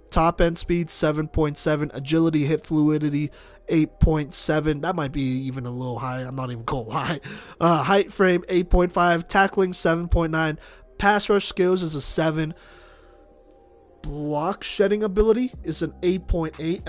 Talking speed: 135 wpm